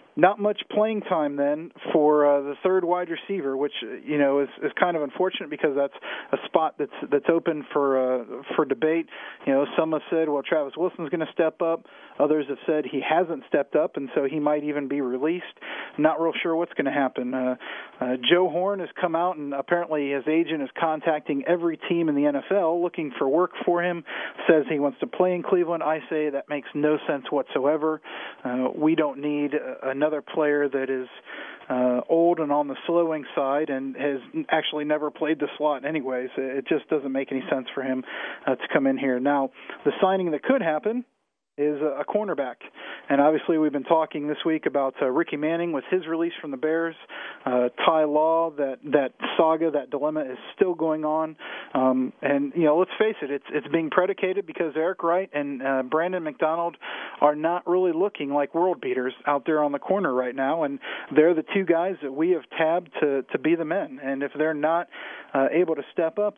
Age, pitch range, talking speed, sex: 40-59, 140-170 Hz, 205 wpm, male